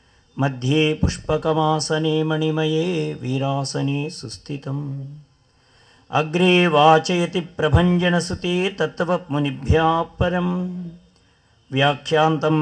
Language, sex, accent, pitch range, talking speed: English, male, Indian, 135-155 Hz, 65 wpm